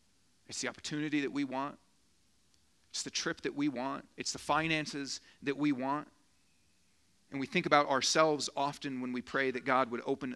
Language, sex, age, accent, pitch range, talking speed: English, male, 40-59, American, 125-150 Hz, 180 wpm